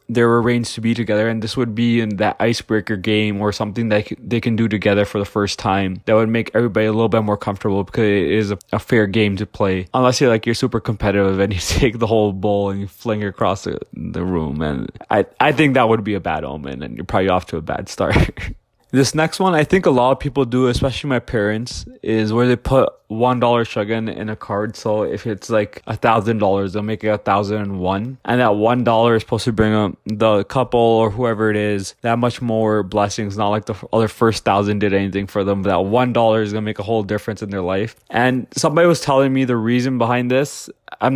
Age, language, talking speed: 20-39, English, 245 wpm